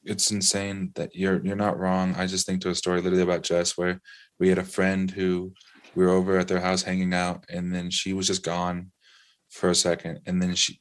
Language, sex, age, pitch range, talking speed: English, male, 20-39, 90-100 Hz, 235 wpm